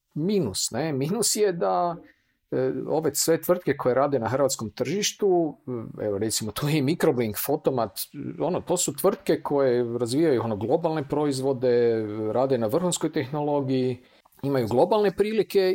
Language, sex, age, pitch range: Croatian, male, 50-69, 135-190 Hz